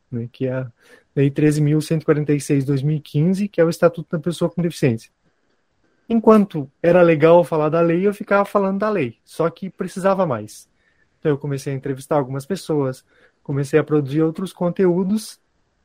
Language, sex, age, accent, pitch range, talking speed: Portuguese, male, 20-39, Brazilian, 145-185 Hz, 165 wpm